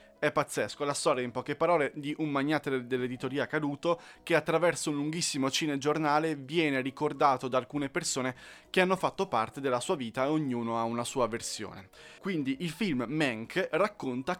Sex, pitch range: male, 120-155 Hz